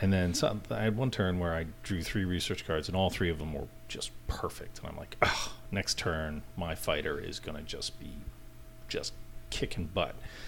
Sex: male